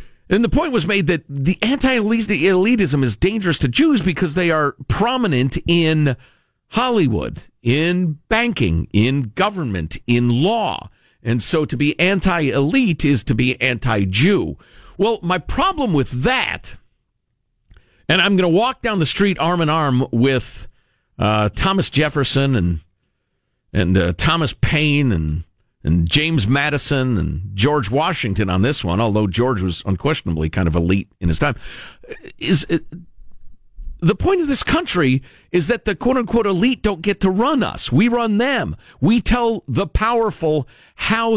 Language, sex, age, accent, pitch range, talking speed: English, male, 50-69, American, 120-200 Hz, 150 wpm